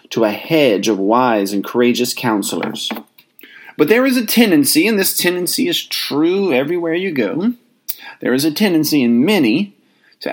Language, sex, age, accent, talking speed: English, male, 40-59, American, 165 wpm